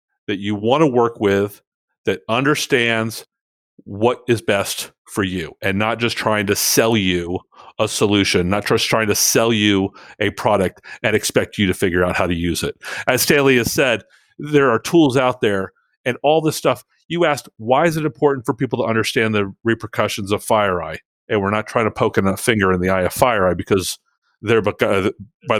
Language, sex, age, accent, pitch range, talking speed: English, male, 40-59, American, 105-130 Hz, 190 wpm